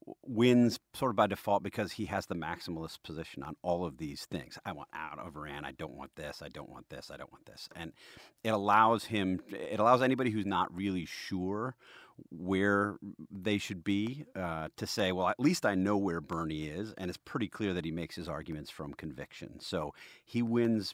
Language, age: English, 40-59